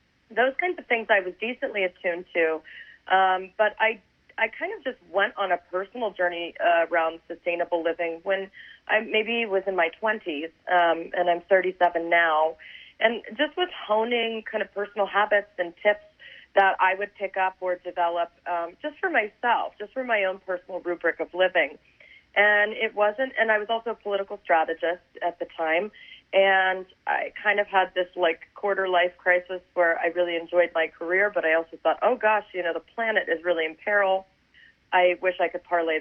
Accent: American